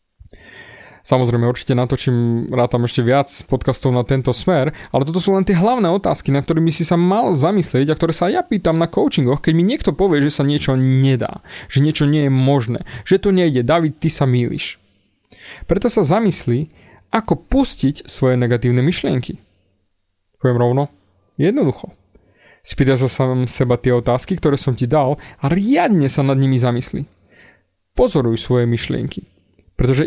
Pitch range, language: 125-170 Hz, Slovak